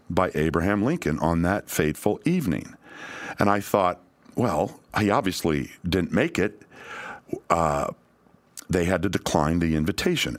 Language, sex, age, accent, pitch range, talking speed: English, male, 50-69, American, 90-125 Hz, 135 wpm